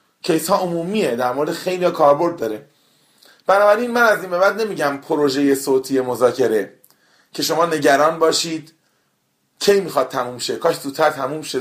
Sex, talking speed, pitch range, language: male, 160 wpm, 140-180 Hz, Persian